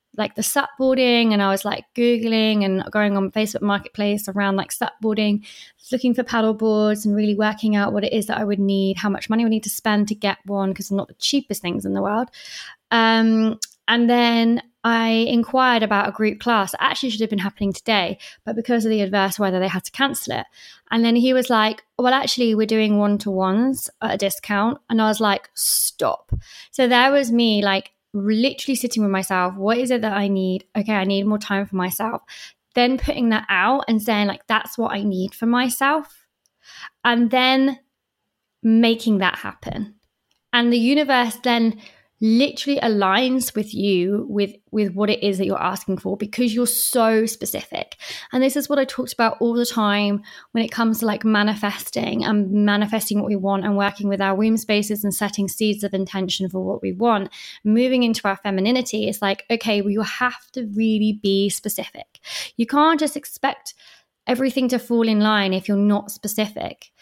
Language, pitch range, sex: English, 205-240 Hz, female